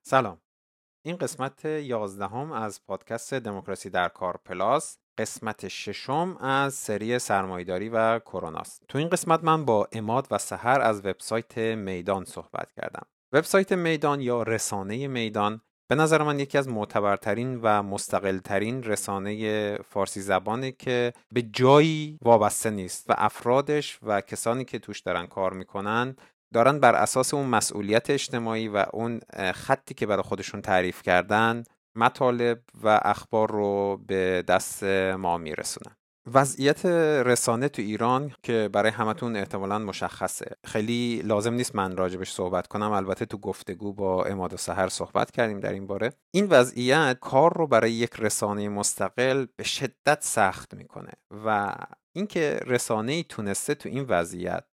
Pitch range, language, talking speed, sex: 100-130 Hz, Persian, 140 wpm, male